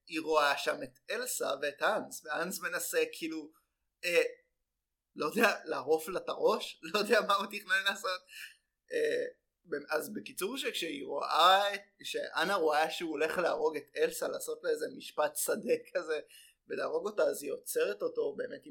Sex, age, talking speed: male, 20-39, 160 wpm